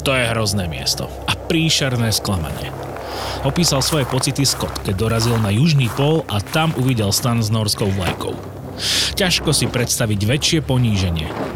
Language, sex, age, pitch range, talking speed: Slovak, male, 30-49, 100-135 Hz, 145 wpm